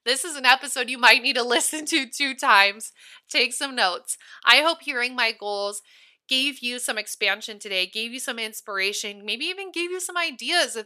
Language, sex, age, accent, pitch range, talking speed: English, female, 20-39, American, 215-275 Hz, 200 wpm